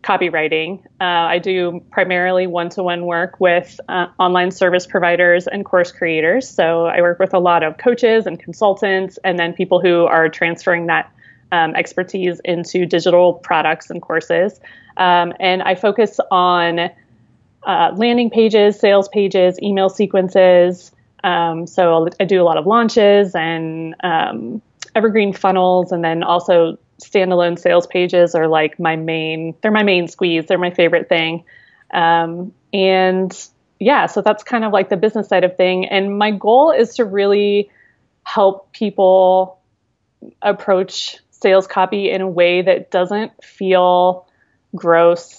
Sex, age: female, 30-49